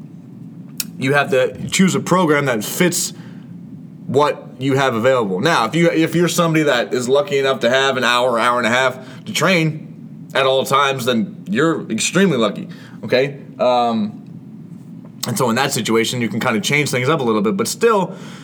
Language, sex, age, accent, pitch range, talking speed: English, male, 20-39, American, 130-180 Hz, 190 wpm